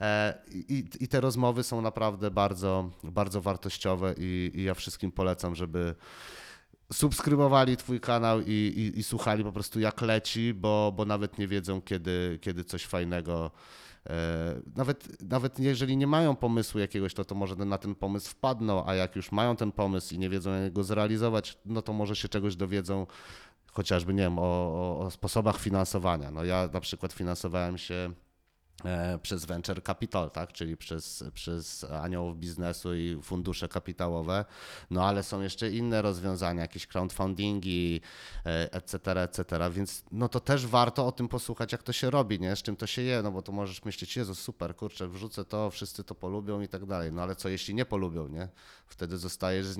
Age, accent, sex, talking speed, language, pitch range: 30-49, native, male, 170 wpm, Polish, 90-105 Hz